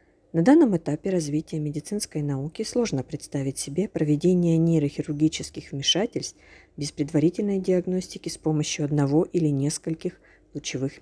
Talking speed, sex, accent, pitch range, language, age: 115 wpm, female, native, 150-185 Hz, Ukrainian, 40-59